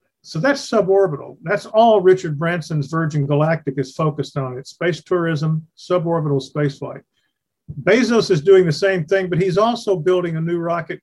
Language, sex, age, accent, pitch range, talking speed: English, male, 50-69, American, 145-180 Hz, 165 wpm